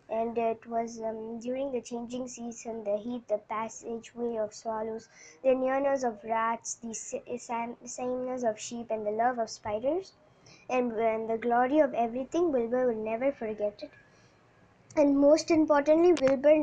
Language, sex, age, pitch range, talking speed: Tamil, male, 20-39, 235-280 Hz, 155 wpm